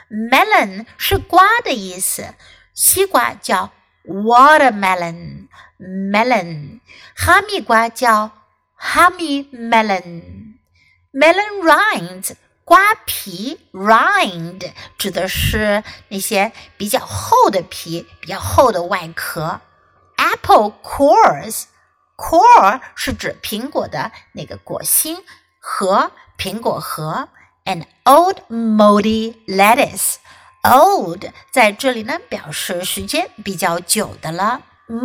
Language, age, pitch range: Chinese, 60-79, 195-315 Hz